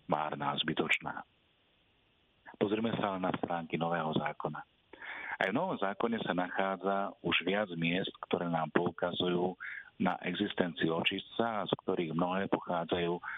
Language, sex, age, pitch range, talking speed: Slovak, male, 50-69, 80-100 Hz, 125 wpm